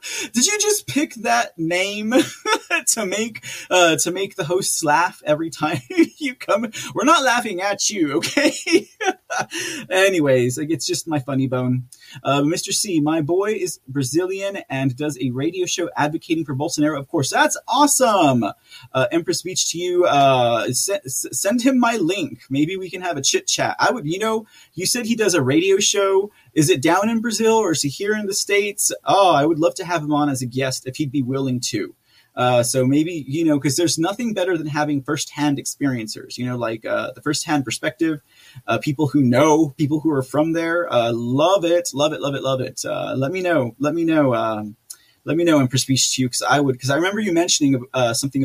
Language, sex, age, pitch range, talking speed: English, male, 30-49, 130-195 Hz, 210 wpm